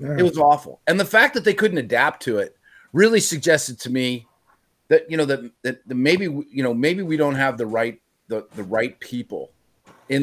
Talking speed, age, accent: 210 wpm, 40-59, American